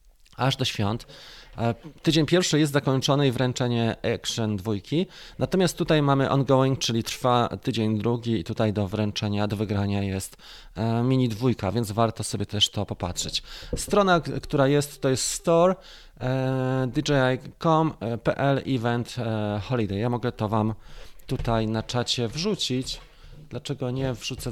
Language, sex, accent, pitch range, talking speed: Polish, male, native, 110-145 Hz, 130 wpm